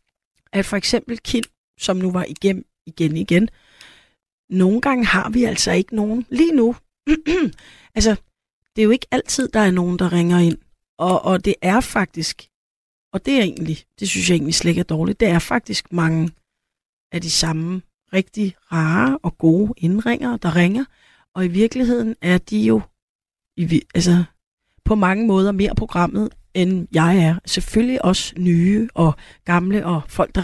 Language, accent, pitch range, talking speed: Danish, native, 170-215 Hz, 165 wpm